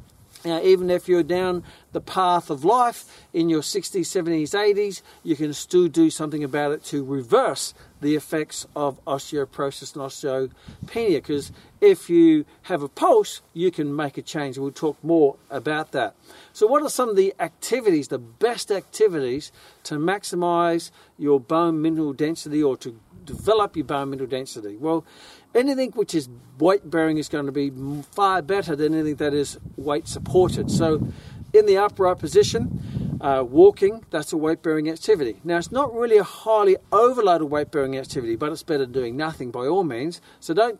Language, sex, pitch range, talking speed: English, male, 145-210 Hz, 170 wpm